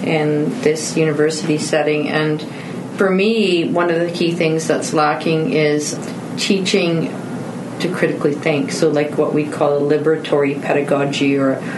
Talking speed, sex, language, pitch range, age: 145 wpm, female, English, 150-175 Hz, 40-59